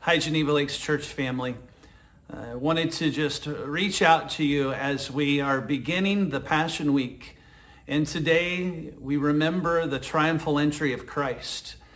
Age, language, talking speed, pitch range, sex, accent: 40-59, English, 145 wpm, 135-165 Hz, male, American